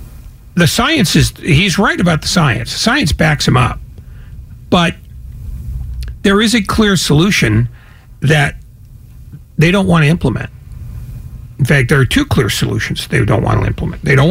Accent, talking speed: American, 160 wpm